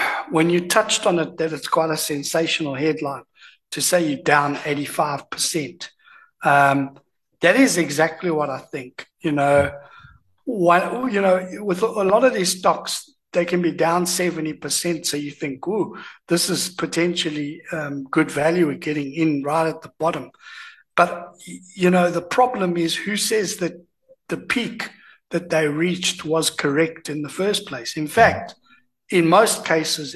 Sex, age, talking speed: male, 60-79, 160 wpm